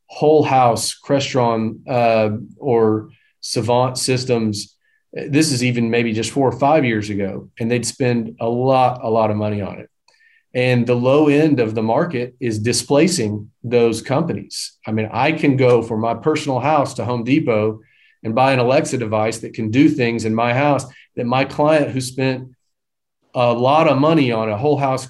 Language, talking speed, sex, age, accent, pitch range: English, 180 wpm, male, 40-59, American, 115-145 Hz